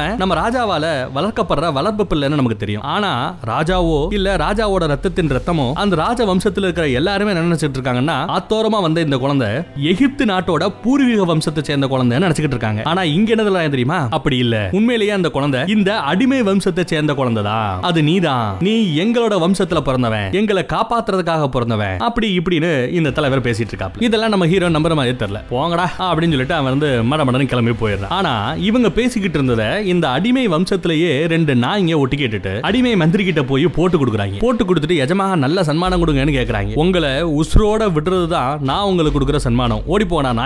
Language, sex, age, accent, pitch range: Tamil, male, 30-49, native, 130-185 Hz